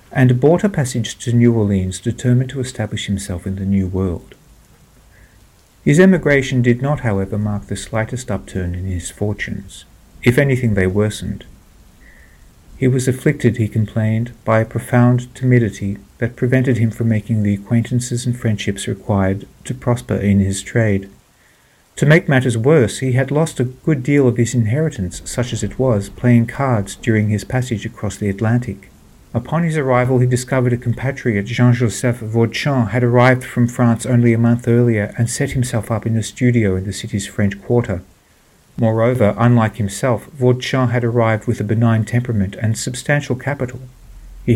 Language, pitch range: English, 100-125 Hz